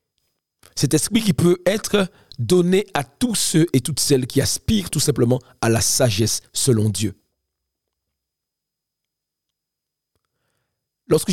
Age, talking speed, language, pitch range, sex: 40-59, 115 wpm, French, 115-150 Hz, male